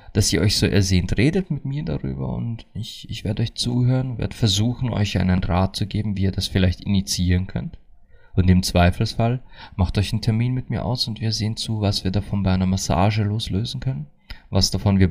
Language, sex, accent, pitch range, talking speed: German, male, German, 90-115 Hz, 210 wpm